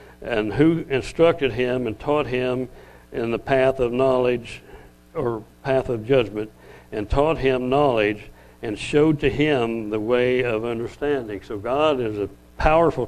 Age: 60-79